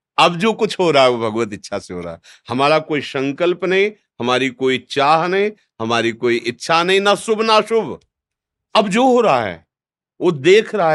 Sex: male